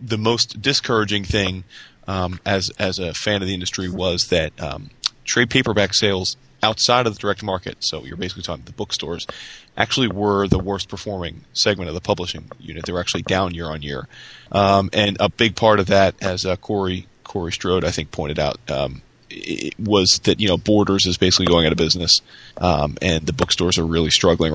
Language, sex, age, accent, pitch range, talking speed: English, male, 30-49, American, 90-105 Hz, 195 wpm